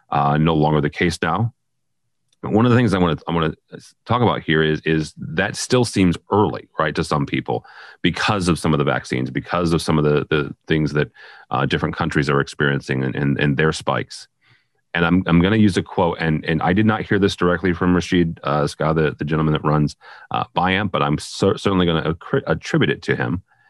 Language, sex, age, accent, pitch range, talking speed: English, male, 30-49, American, 75-100 Hz, 230 wpm